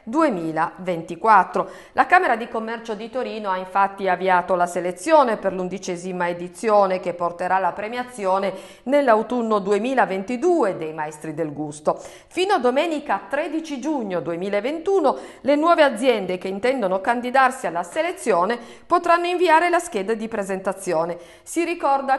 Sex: female